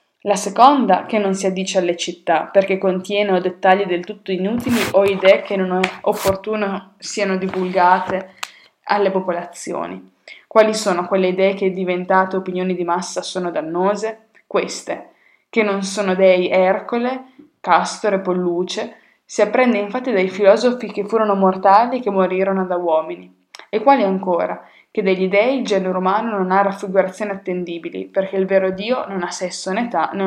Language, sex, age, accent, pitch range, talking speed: Italian, female, 20-39, native, 180-210 Hz, 160 wpm